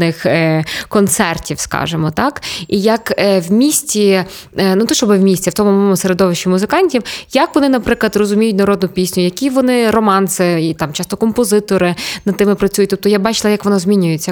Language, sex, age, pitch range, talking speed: Ukrainian, female, 20-39, 170-205 Hz, 165 wpm